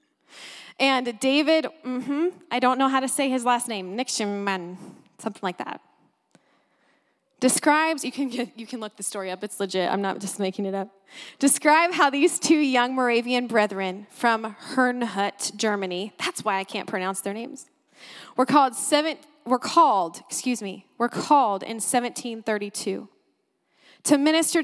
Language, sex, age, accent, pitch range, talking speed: English, female, 20-39, American, 225-295 Hz, 155 wpm